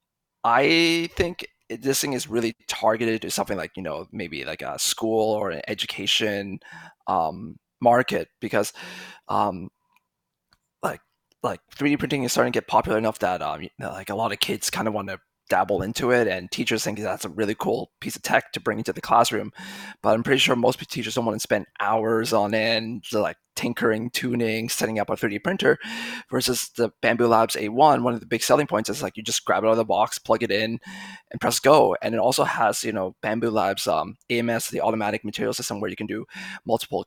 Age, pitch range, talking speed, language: 20-39, 110-125 Hz, 210 wpm, English